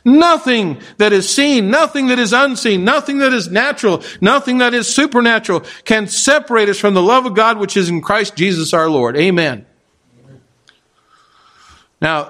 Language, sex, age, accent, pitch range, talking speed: English, male, 50-69, American, 170-215 Hz, 160 wpm